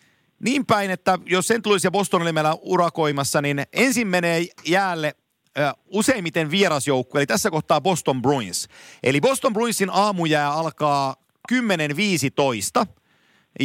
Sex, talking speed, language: male, 130 wpm, Finnish